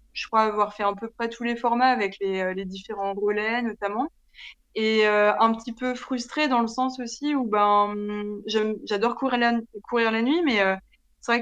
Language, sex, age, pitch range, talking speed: French, female, 20-39, 195-235 Hz, 200 wpm